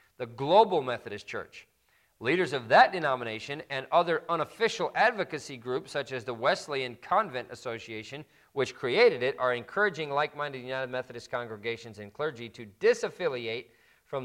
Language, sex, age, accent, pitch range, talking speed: English, male, 40-59, American, 110-140 Hz, 140 wpm